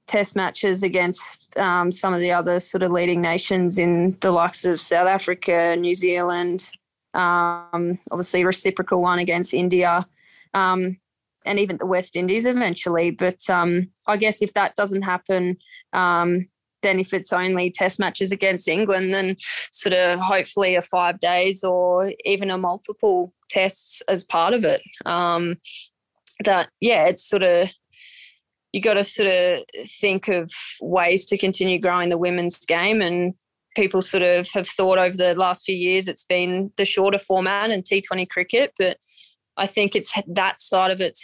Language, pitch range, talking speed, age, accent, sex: English, 175-195 Hz, 165 wpm, 20-39, Australian, female